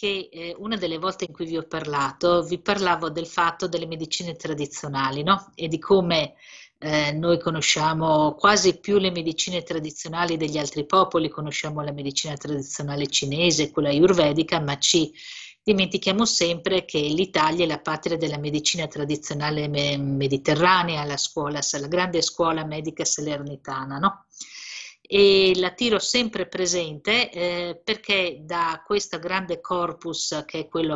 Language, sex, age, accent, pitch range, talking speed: Italian, female, 50-69, native, 150-180 Hz, 135 wpm